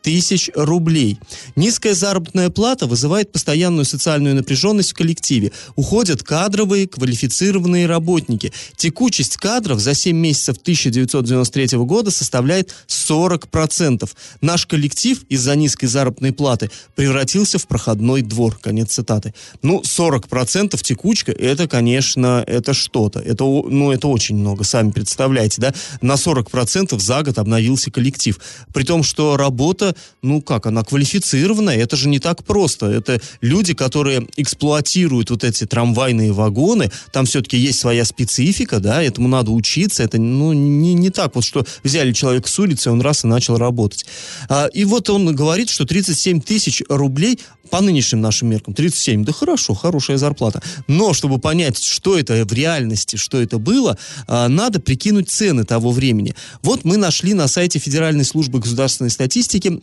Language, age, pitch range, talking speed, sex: Russian, 30-49, 125-170 Hz, 145 wpm, male